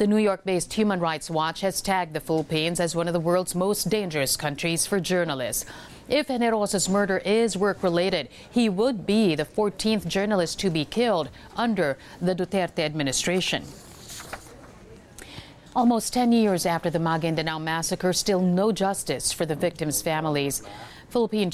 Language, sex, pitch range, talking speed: English, female, 160-195 Hz, 150 wpm